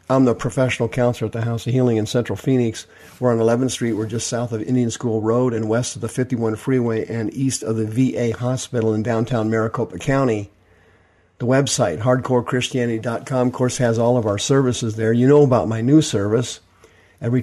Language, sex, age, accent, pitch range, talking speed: English, male, 50-69, American, 110-130 Hz, 195 wpm